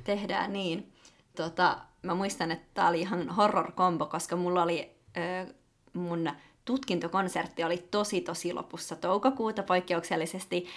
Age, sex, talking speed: 20-39, female, 115 wpm